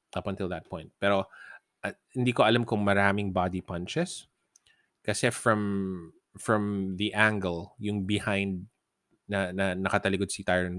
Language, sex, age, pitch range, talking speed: Filipino, male, 20-39, 90-110 Hz, 135 wpm